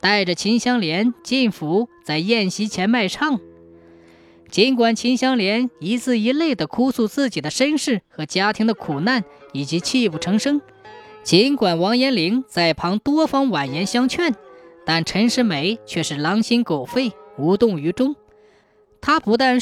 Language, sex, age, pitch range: Chinese, female, 20-39, 185-260 Hz